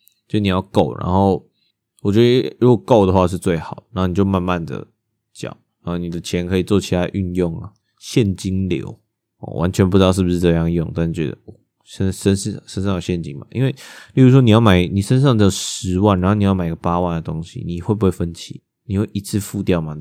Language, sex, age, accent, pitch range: Chinese, male, 20-39, native, 90-105 Hz